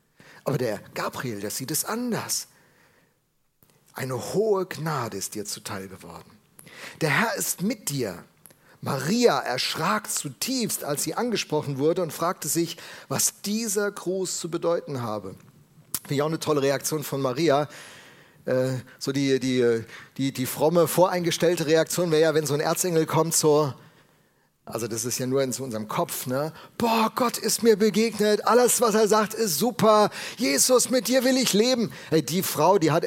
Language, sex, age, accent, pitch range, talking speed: German, male, 40-59, German, 135-190 Hz, 160 wpm